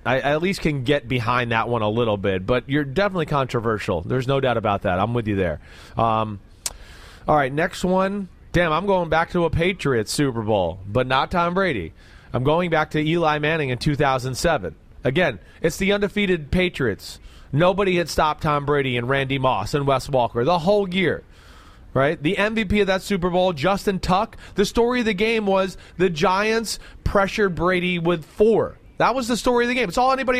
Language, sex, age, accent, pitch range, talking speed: English, male, 30-49, American, 130-210 Hz, 195 wpm